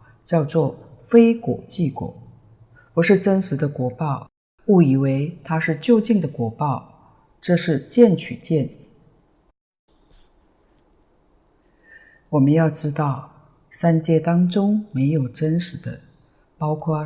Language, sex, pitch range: Chinese, female, 140-175 Hz